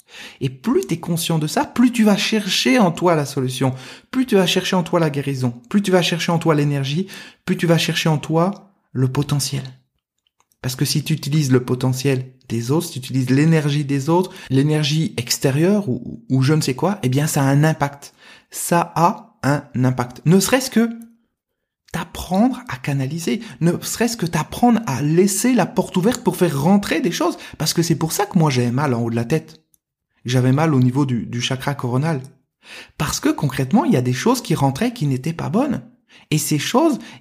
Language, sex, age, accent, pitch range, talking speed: French, male, 30-49, French, 130-185 Hz, 210 wpm